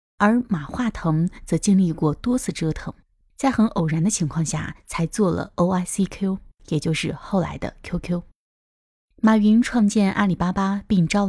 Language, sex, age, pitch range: Chinese, female, 20-39, 160-215 Hz